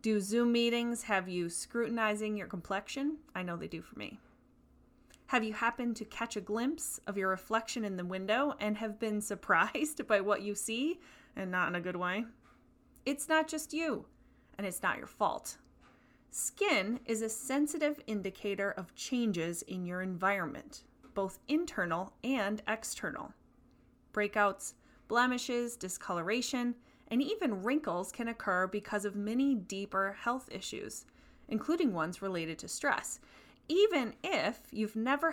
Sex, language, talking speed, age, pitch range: female, English, 150 wpm, 30-49, 195-255 Hz